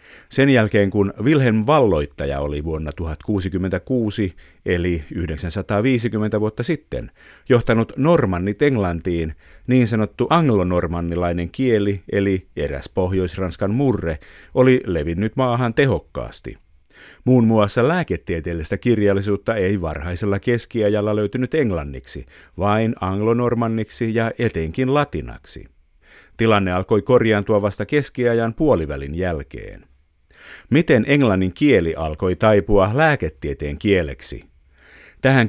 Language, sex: Finnish, male